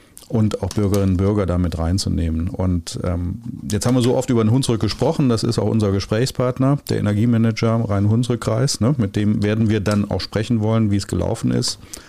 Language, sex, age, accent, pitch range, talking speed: German, male, 40-59, German, 95-115 Hz, 195 wpm